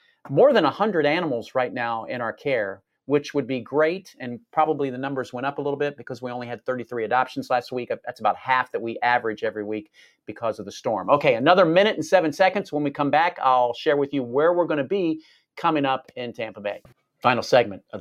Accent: American